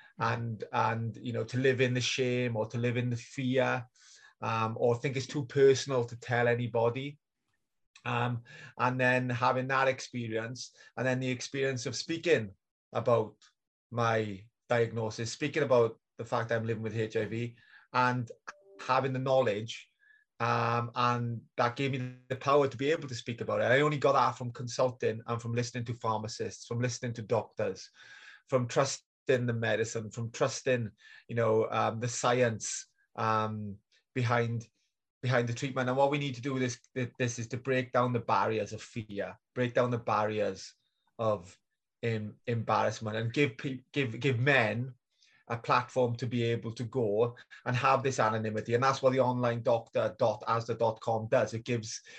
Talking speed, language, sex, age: 170 wpm, English, male, 30-49